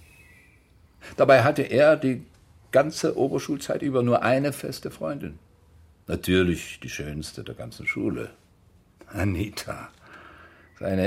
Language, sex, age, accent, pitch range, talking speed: German, male, 60-79, German, 85-105 Hz, 105 wpm